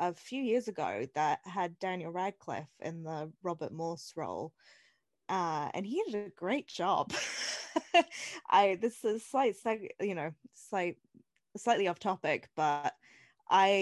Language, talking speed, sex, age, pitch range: English, 135 wpm, female, 20-39, 170-240 Hz